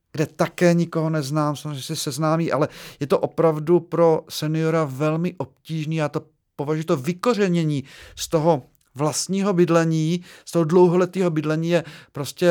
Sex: male